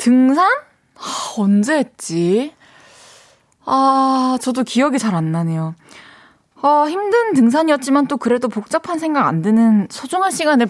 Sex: female